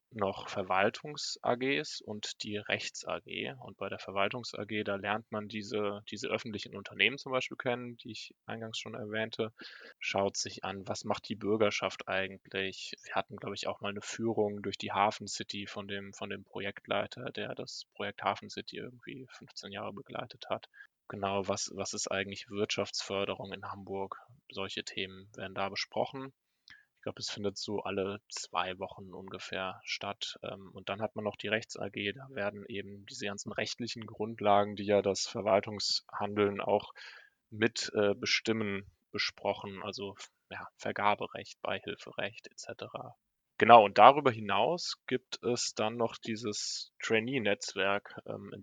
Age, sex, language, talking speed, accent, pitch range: 20-39, male, German, 145 wpm, German, 100-110 Hz